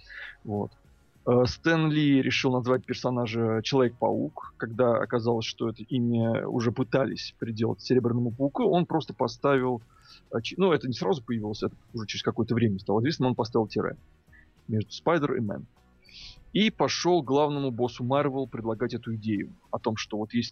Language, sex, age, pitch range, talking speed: Russian, male, 20-39, 110-130 Hz, 150 wpm